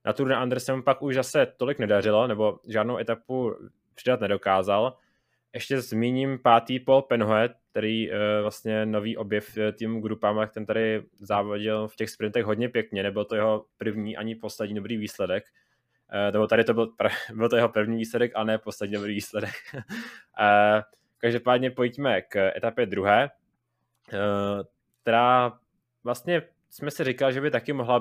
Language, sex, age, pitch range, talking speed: Czech, male, 20-39, 105-125 Hz, 150 wpm